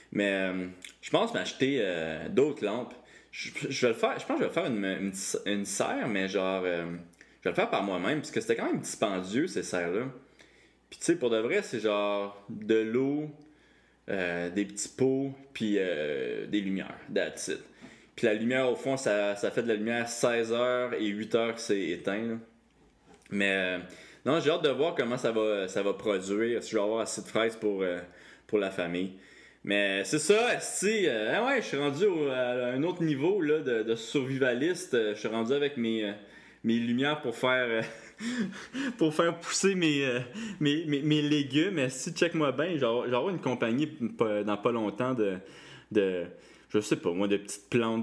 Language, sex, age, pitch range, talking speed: French, male, 20-39, 100-135 Hz, 205 wpm